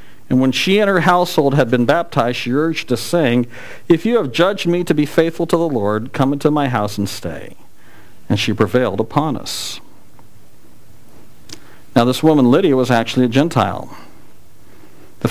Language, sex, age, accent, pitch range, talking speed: English, male, 50-69, American, 125-180 Hz, 175 wpm